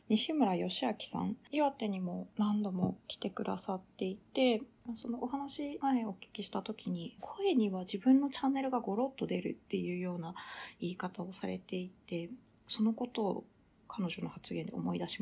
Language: Japanese